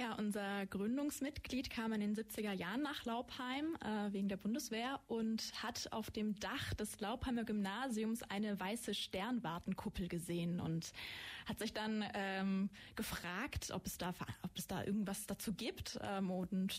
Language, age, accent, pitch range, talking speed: German, 20-39, German, 190-225 Hz, 155 wpm